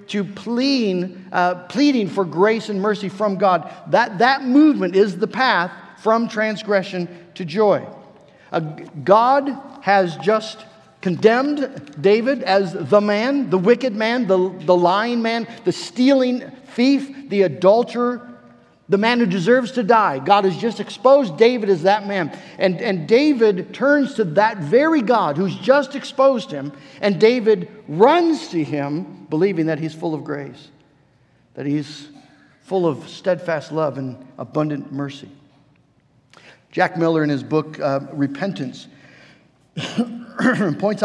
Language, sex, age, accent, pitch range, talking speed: English, male, 50-69, American, 170-230 Hz, 140 wpm